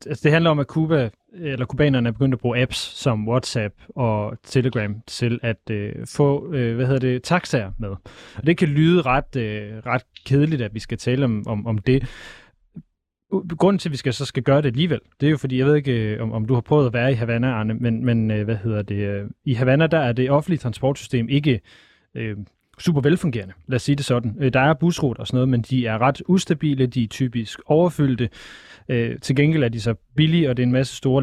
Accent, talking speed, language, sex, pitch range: native, 230 wpm, Danish, male, 115-140 Hz